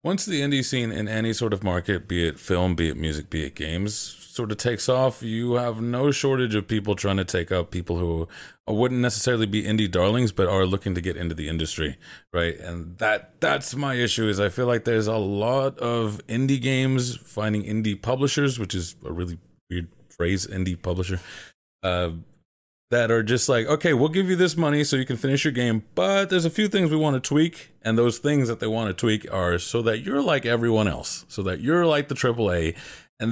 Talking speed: 220 wpm